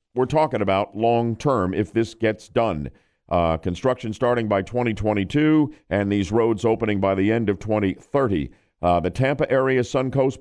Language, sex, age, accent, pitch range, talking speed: English, male, 50-69, American, 100-130 Hz, 155 wpm